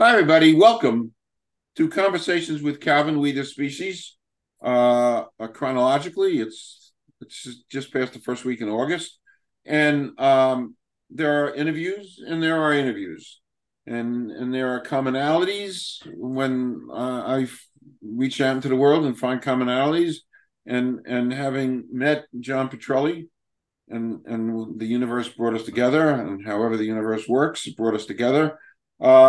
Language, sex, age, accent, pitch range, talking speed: English, male, 50-69, American, 120-145 Hz, 140 wpm